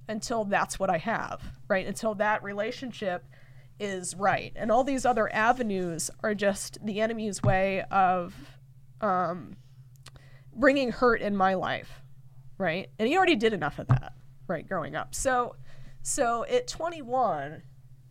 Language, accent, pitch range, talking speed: English, American, 130-200 Hz, 145 wpm